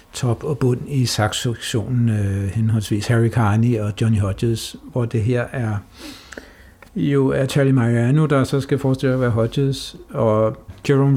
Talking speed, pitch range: 150 wpm, 110-140 Hz